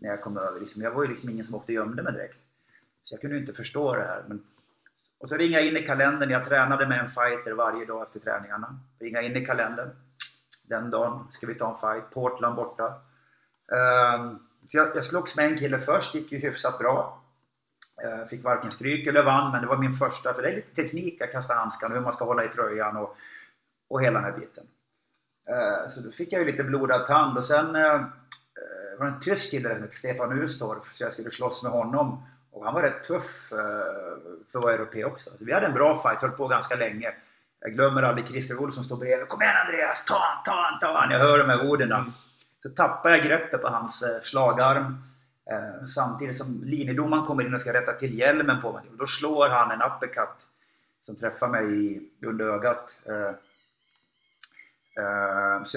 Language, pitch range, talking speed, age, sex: English, 115-145 Hz, 200 wpm, 30-49, male